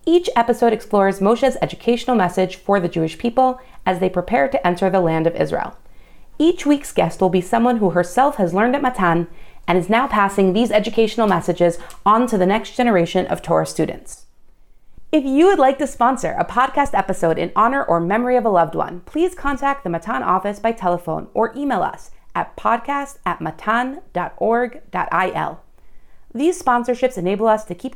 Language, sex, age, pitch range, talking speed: English, female, 30-49, 180-245 Hz, 175 wpm